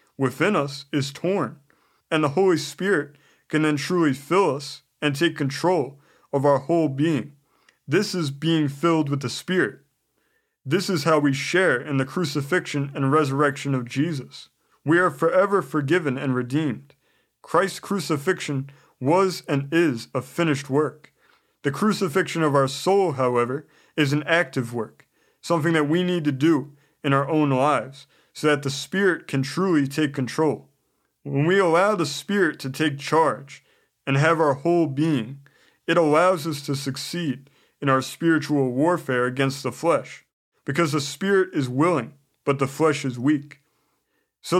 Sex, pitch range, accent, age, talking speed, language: male, 140-165 Hz, American, 20-39, 155 wpm, English